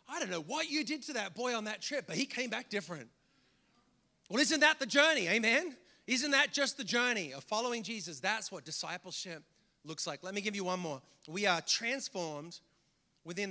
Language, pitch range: English, 175-250 Hz